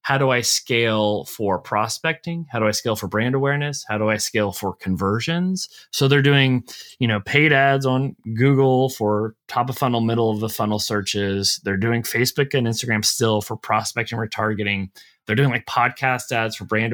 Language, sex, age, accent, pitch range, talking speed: English, male, 30-49, American, 105-135 Hz, 190 wpm